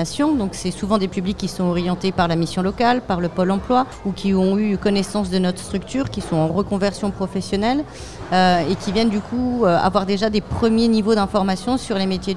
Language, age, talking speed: French, 40-59, 220 wpm